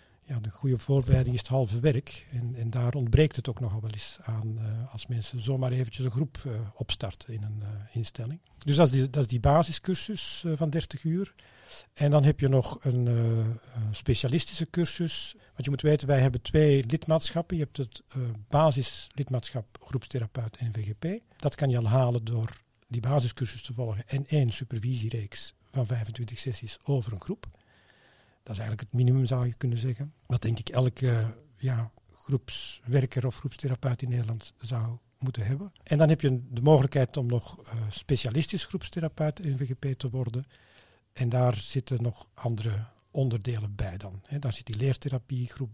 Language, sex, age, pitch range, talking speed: Dutch, male, 50-69, 115-140 Hz, 175 wpm